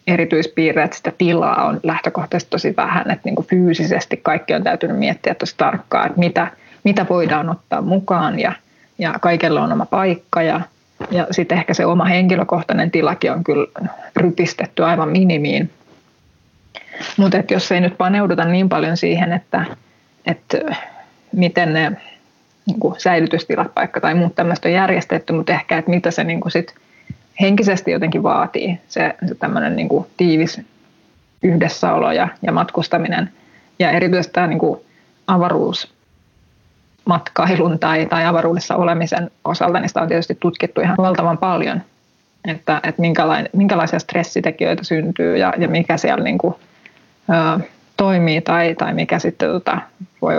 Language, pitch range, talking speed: Finnish, 165-185 Hz, 140 wpm